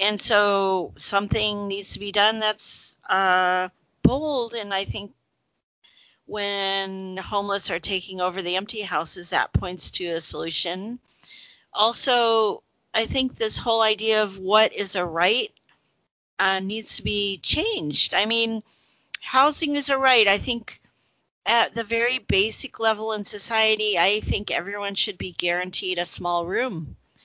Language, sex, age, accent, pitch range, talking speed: English, female, 40-59, American, 180-220 Hz, 145 wpm